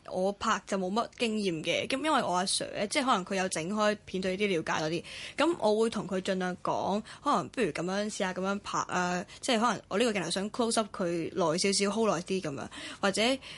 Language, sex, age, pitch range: Chinese, female, 10-29, 185-230 Hz